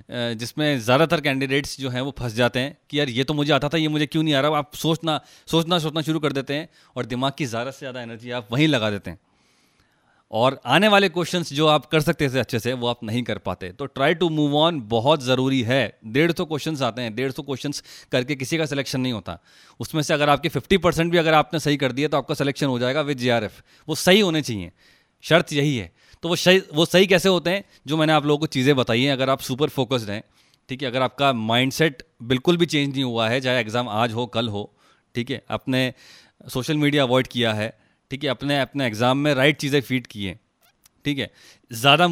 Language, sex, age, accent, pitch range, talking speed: Hindi, male, 30-49, native, 120-155 Hz, 235 wpm